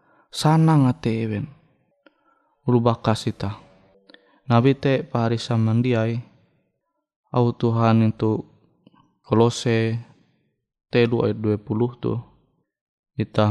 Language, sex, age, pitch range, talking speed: Indonesian, male, 20-39, 105-125 Hz, 70 wpm